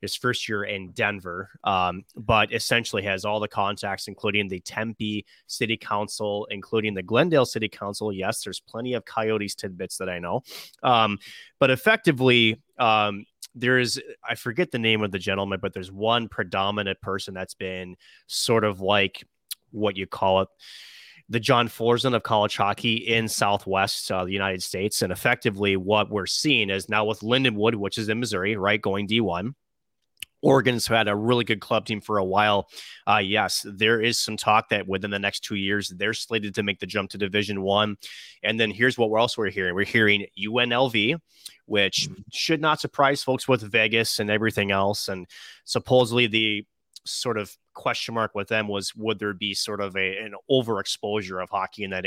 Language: English